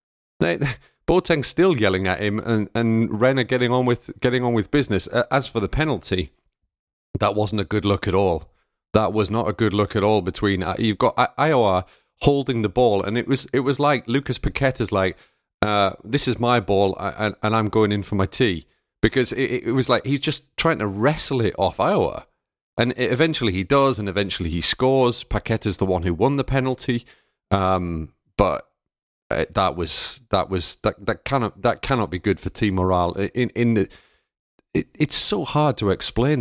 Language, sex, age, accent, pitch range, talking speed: English, male, 30-49, British, 100-130 Hz, 195 wpm